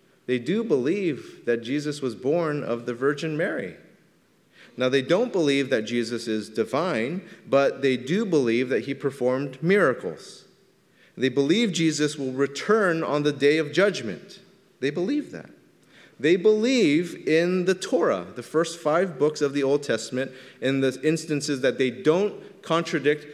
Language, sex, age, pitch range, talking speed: English, male, 30-49, 130-170 Hz, 155 wpm